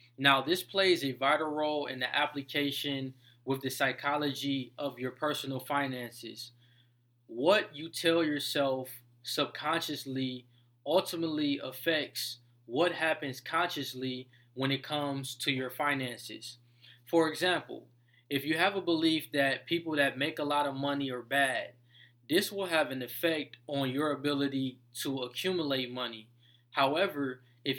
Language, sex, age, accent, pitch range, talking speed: English, male, 20-39, American, 130-150 Hz, 135 wpm